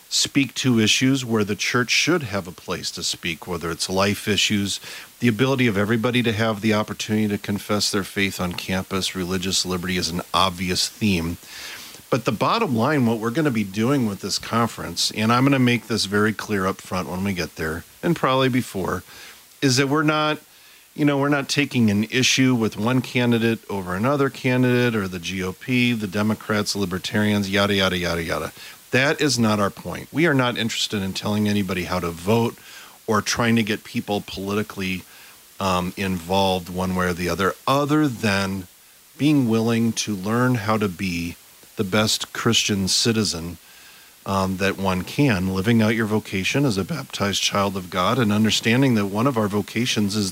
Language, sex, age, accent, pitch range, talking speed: English, male, 40-59, American, 95-115 Hz, 185 wpm